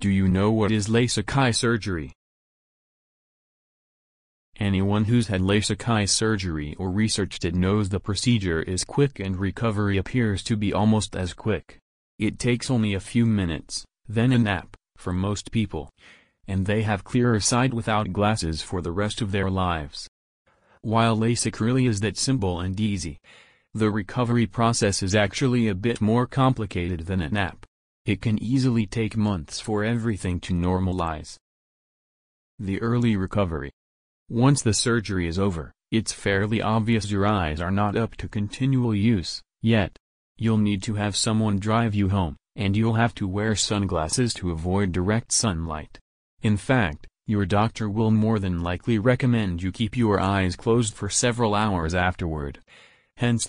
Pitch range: 90-115 Hz